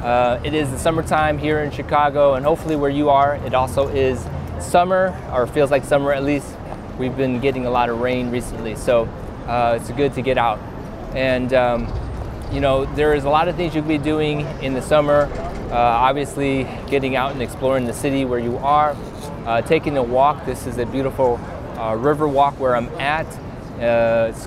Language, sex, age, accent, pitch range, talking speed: English, male, 20-39, American, 120-140 Hz, 200 wpm